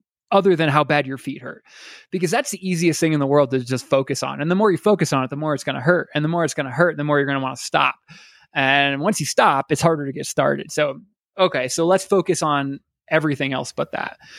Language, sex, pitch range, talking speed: English, male, 140-170 Hz, 275 wpm